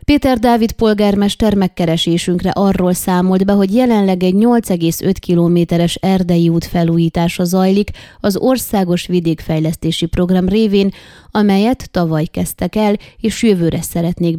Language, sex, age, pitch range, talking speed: Hungarian, female, 20-39, 175-215 Hz, 115 wpm